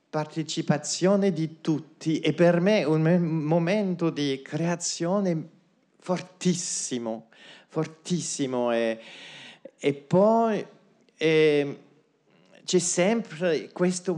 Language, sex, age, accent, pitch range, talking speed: Italian, male, 40-59, native, 130-175 Hz, 80 wpm